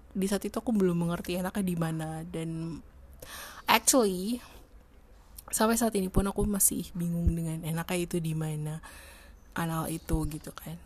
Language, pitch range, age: Indonesian, 150-195 Hz, 20-39